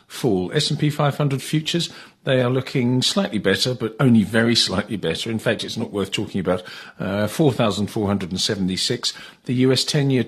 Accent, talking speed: British, 145 wpm